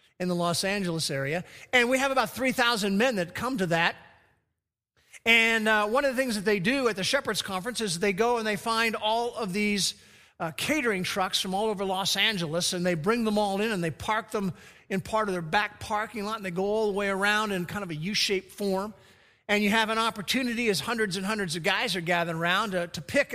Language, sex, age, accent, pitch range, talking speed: English, male, 50-69, American, 175-220 Hz, 235 wpm